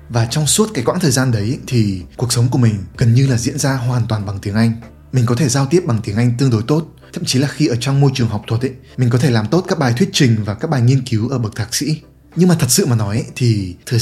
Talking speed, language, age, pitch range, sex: 310 wpm, Vietnamese, 20-39, 115-140 Hz, male